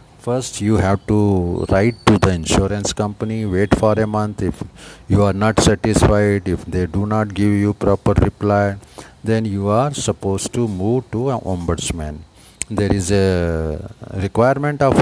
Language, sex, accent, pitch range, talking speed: Hindi, male, native, 95-115 Hz, 160 wpm